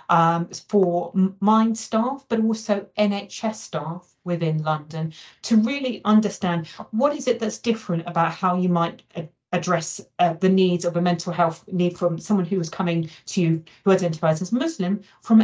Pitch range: 165-205 Hz